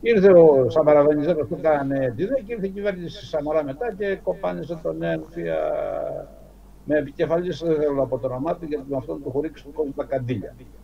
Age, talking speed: 60-79, 185 wpm